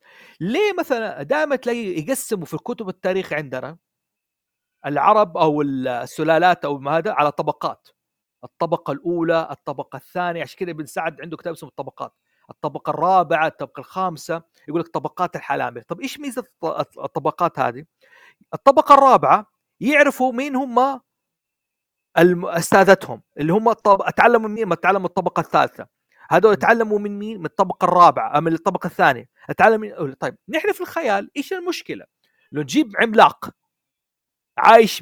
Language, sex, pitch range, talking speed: Arabic, male, 165-255 Hz, 135 wpm